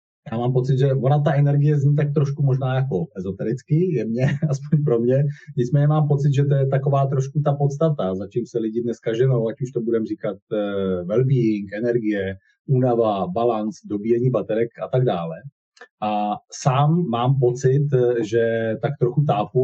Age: 30-49